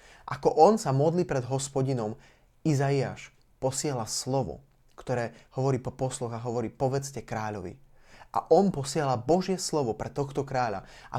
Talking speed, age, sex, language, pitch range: 140 wpm, 20-39, male, Slovak, 120-145 Hz